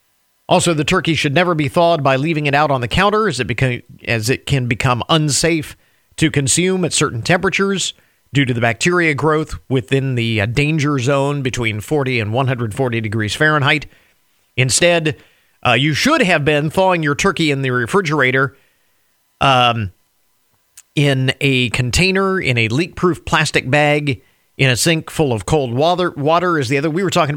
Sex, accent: male, American